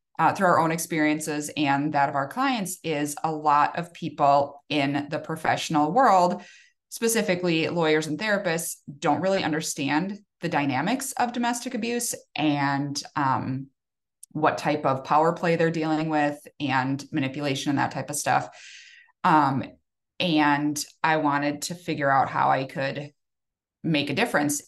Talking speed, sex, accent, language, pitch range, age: 150 wpm, female, American, English, 145-185 Hz, 20-39